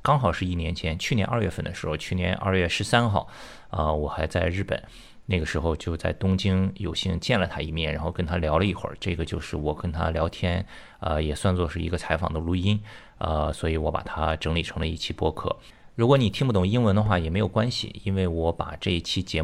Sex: male